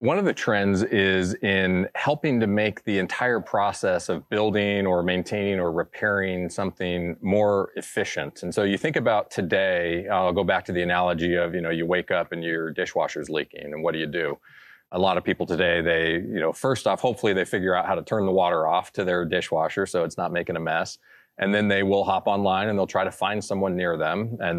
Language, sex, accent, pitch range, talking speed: English, male, American, 90-100 Hz, 225 wpm